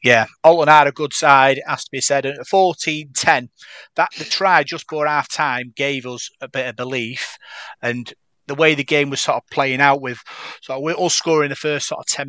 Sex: male